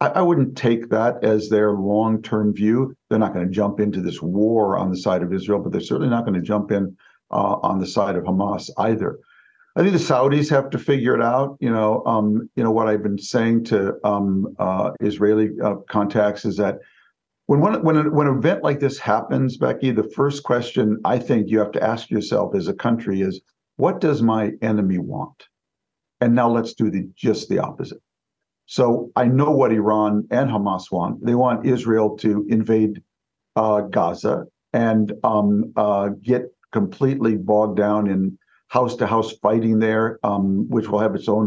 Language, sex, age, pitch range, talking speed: English, male, 50-69, 105-125 Hz, 185 wpm